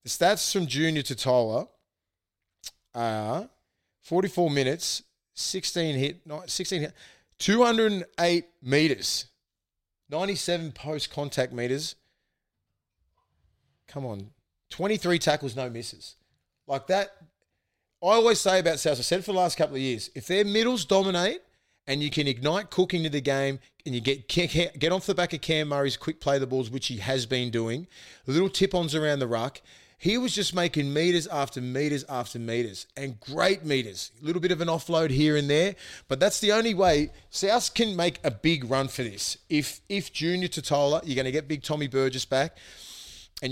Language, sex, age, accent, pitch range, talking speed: English, male, 30-49, Australian, 130-170 Hz, 170 wpm